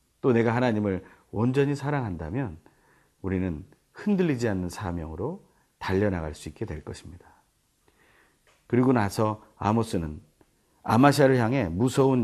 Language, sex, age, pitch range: Korean, male, 40-59, 95-145 Hz